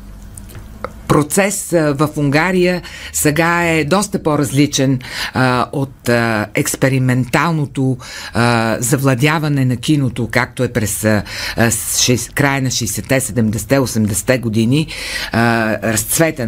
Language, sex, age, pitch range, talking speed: Bulgarian, female, 50-69, 120-160 Hz, 100 wpm